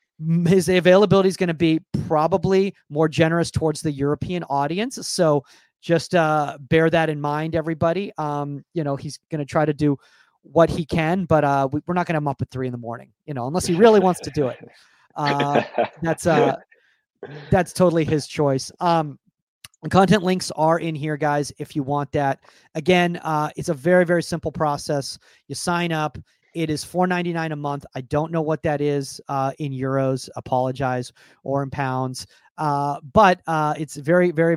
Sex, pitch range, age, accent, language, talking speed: male, 145-170 Hz, 30-49, American, English, 185 wpm